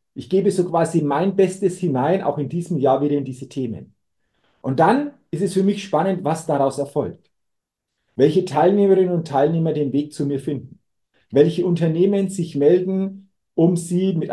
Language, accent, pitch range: German, German, 135-180 Hz